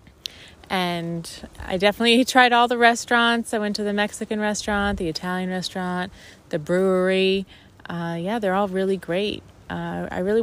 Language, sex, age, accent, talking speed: English, female, 20-39, American, 155 wpm